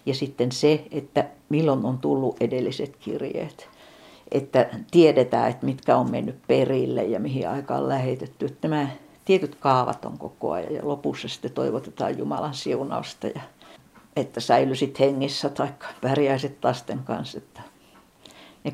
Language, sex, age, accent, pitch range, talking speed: Finnish, female, 60-79, native, 130-150 Hz, 140 wpm